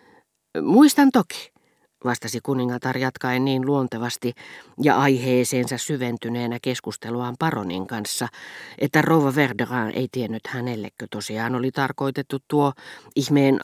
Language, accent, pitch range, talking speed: Finnish, native, 120-145 Hz, 105 wpm